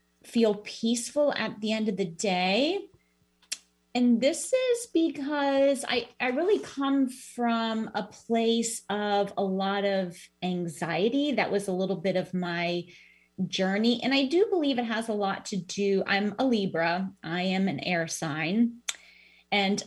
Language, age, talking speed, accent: English, 30-49, 155 wpm, American